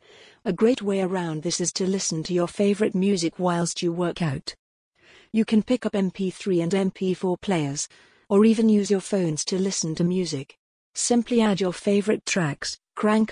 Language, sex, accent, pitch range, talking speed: English, female, British, 170-205 Hz, 175 wpm